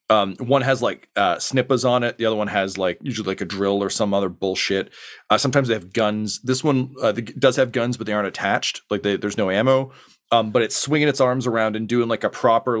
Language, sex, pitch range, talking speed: English, male, 100-130 Hz, 245 wpm